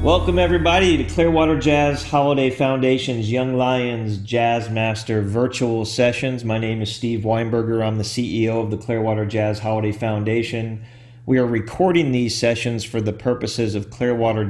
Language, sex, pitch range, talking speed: English, male, 110-125 Hz, 155 wpm